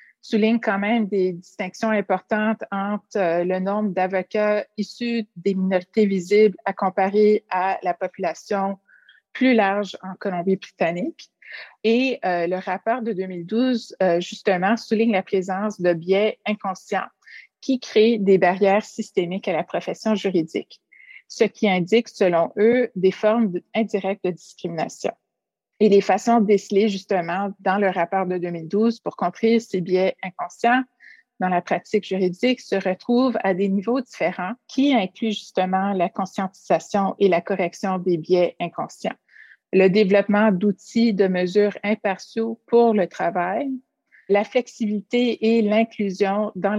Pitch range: 185-225 Hz